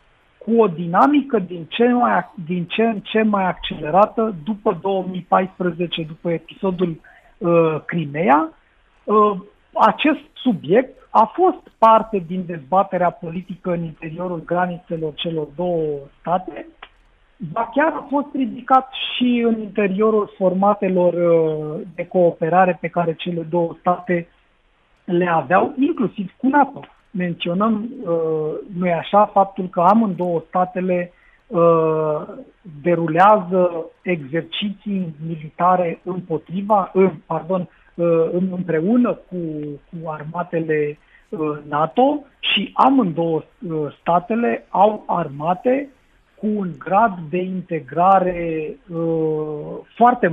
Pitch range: 165-210 Hz